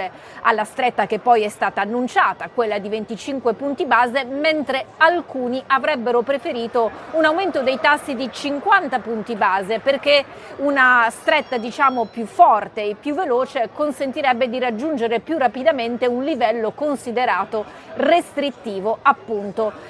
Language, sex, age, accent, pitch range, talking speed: Italian, female, 30-49, native, 230-285 Hz, 130 wpm